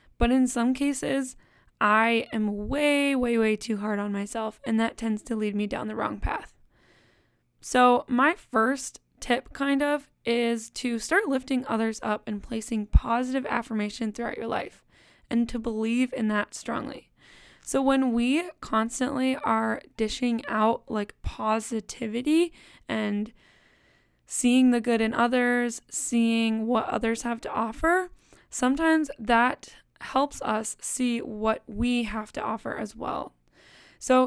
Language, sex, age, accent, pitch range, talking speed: English, female, 10-29, American, 220-255 Hz, 145 wpm